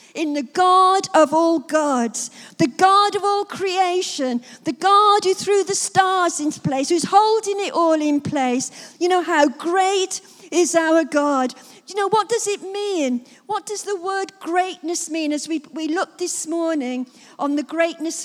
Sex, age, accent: female, 50-69, British